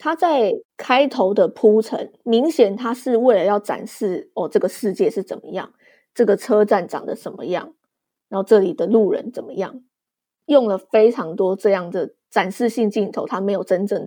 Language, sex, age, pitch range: Chinese, female, 20-39, 200-270 Hz